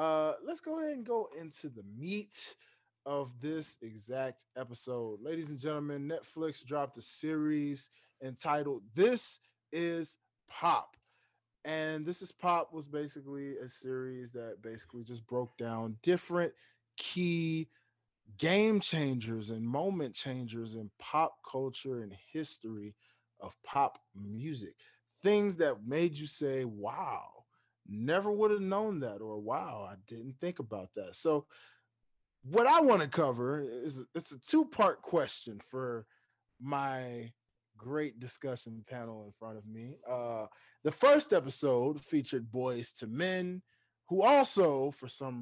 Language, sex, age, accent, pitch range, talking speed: English, male, 20-39, American, 120-165 Hz, 135 wpm